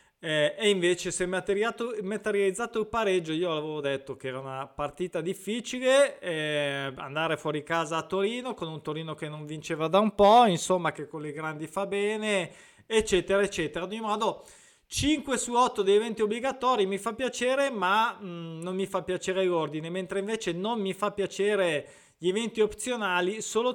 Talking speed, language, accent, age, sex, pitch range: 175 wpm, Italian, native, 20-39, male, 160-210 Hz